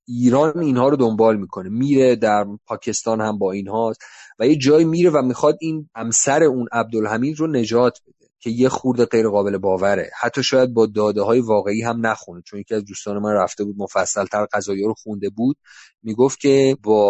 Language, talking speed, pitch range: Persian, 190 wpm, 105-140 Hz